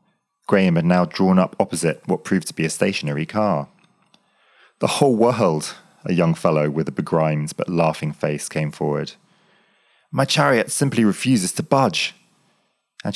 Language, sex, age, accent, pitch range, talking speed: English, male, 30-49, British, 80-130 Hz, 155 wpm